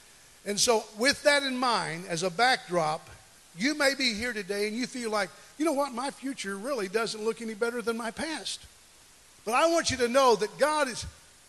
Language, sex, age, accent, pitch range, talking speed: English, male, 50-69, American, 200-275 Hz, 210 wpm